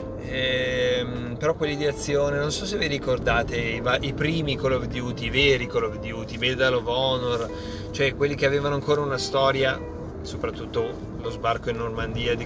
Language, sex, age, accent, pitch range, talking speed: Italian, male, 30-49, native, 115-140 Hz, 185 wpm